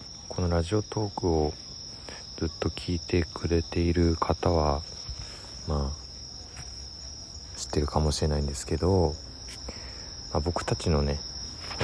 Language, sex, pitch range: Japanese, male, 75-95 Hz